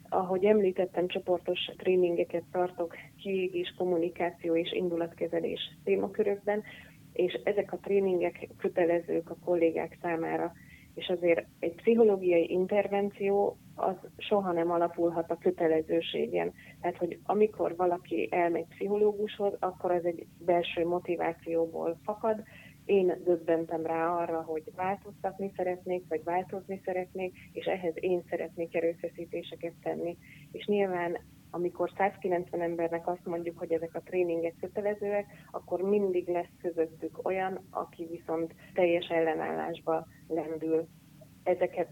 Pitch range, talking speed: 165-185 Hz, 115 wpm